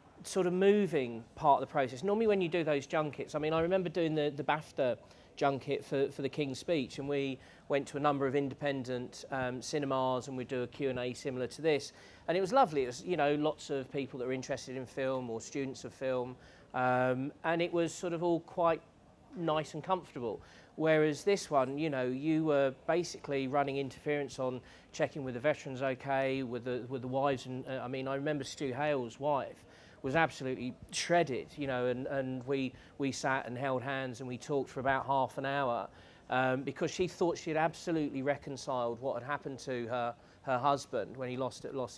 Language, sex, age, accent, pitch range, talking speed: English, male, 40-59, British, 130-150 Hz, 210 wpm